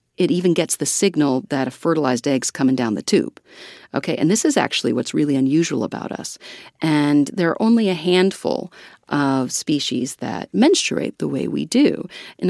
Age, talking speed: 40-59, 180 wpm